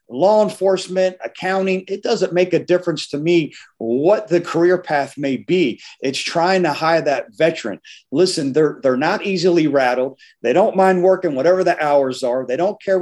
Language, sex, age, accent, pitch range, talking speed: English, male, 40-59, American, 140-180 Hz, 185 wpm